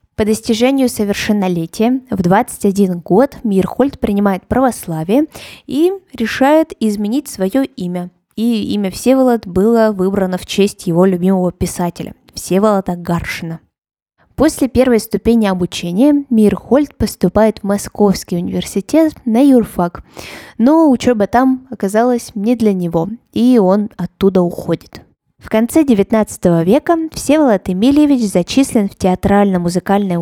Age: 20-39